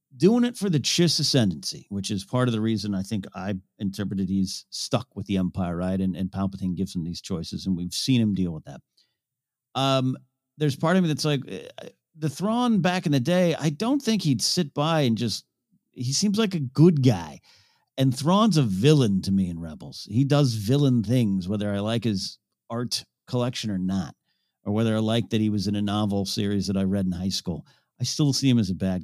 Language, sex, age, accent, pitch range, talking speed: English, male, 50-69, American, 100-140 Hz, 220 wpm